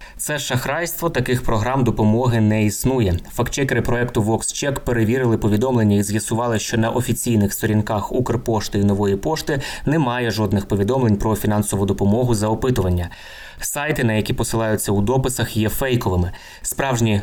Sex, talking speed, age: male, 135 wpm, 20-39